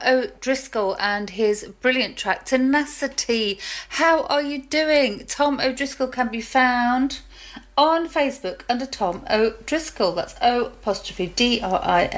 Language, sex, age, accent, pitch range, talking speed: English, female, 40-59, British, 185-255 Hz, 145 wpm